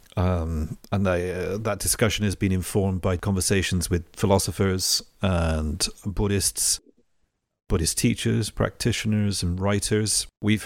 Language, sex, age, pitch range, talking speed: English, male, 40-59, 95-110 Hz, 115 wpm